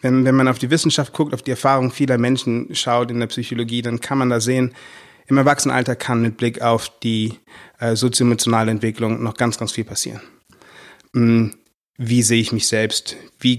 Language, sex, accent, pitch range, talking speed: German, male, German, 115-130 Hz, 185 wpm